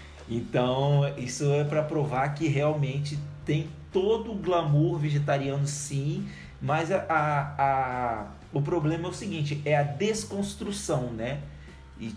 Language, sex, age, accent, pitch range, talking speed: Portuguese, male, 20-39, Brazilian, 135-150 Hz, 120 wpm